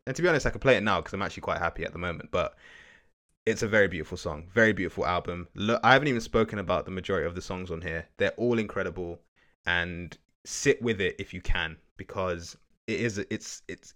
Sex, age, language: male, 20-39, English